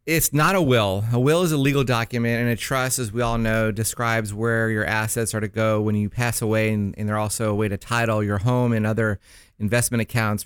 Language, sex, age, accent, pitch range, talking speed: English, male, 30-49, American, 105-125 Hz, 240 wpm